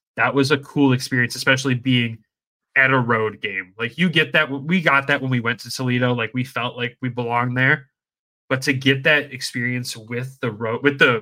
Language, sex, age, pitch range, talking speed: English, male, 20-39, 115-140 Hz, 215 wpm